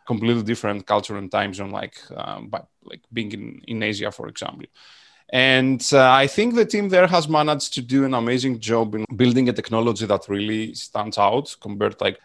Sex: male